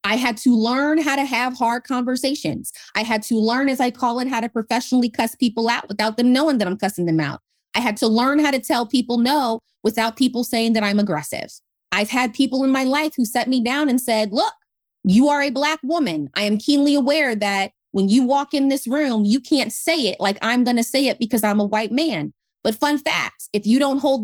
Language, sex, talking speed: English, female, 240 wpm